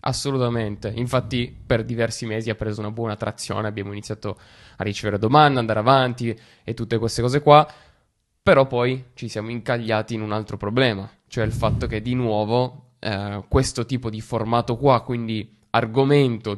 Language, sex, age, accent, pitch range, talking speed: Italian, male, 20-39, native, 110-130 Hz, 165 wpm